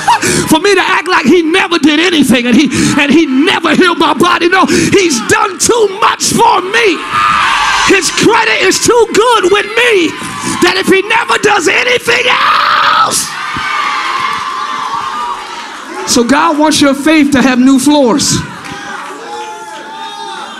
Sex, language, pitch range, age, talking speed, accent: male, English, 235-315 Hz, 40-59, 135 wpm, American